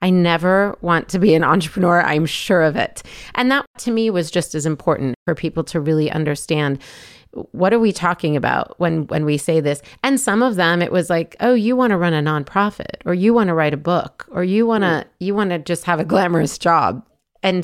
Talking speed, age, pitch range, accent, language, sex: 230 wpm, 30-49, 160-200 Hz, American, English, female